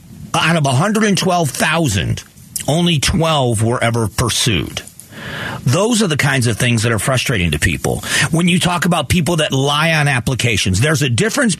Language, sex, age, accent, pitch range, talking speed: English, male, 40-59, American, 120-160 Hz, 160 wpm